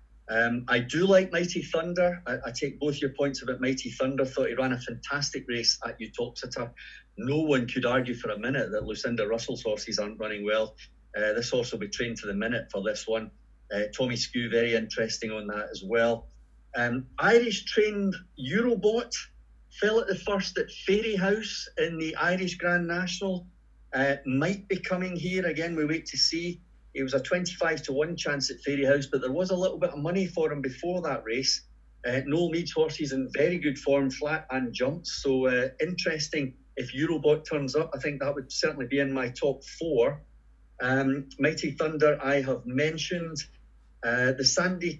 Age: 50-69